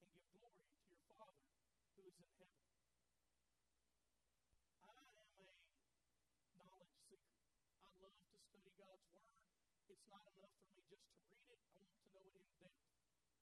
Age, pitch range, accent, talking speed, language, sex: 40-59, 180-215 Hz, American, 155 wpm, English, male